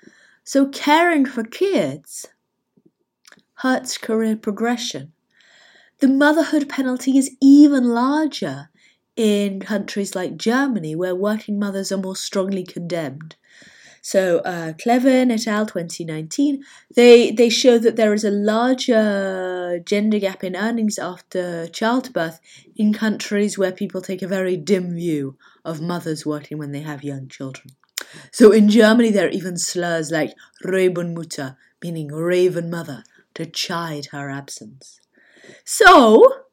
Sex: female